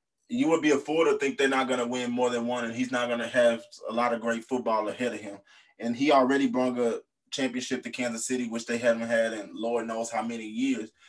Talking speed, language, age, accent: 260 wpm, English, 20-39, American